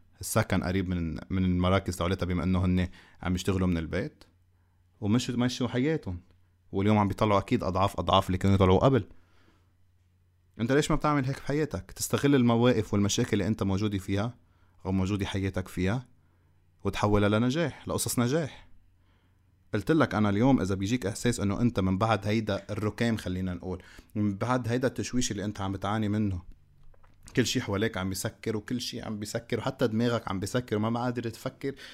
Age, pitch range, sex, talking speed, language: 30-49, 90-115 Hz, male, 165 wpm, Arabic